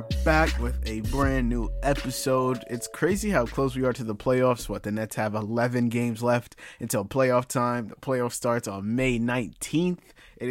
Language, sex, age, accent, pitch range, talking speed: English, male, 20-39, American, 115-130 Hz, 185 wpm